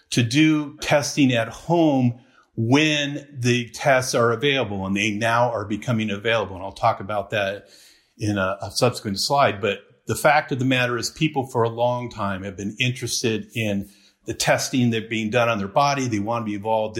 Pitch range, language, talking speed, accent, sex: 105-130 Hz, English, 195 wpm, American, male